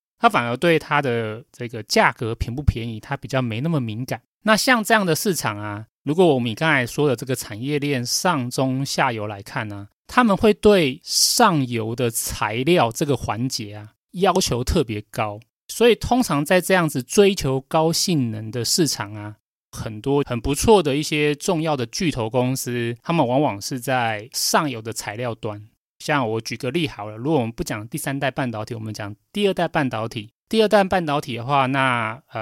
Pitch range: 115-155 Hz